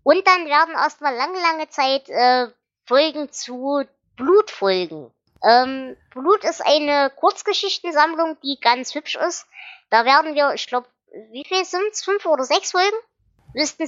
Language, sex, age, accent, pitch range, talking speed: German, male, 20-39, German, 225-330 Hz, 145 wpm